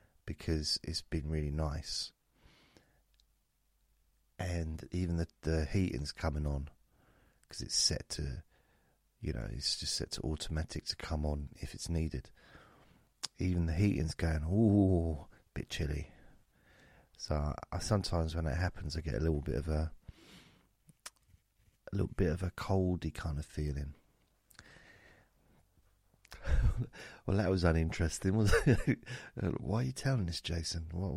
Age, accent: 40-59, British